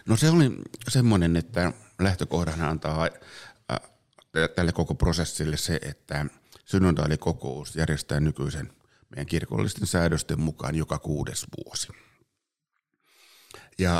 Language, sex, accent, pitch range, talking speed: Finnish, male, native, 75-85 Hz, 100 wpm